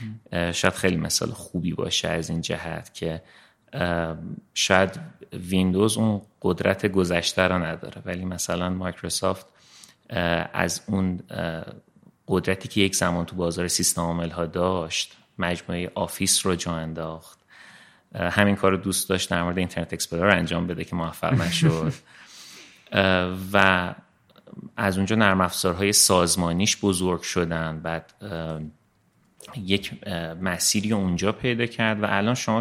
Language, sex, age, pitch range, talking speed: Persian, male, 30-49, 85-100 Hz, 120 wpm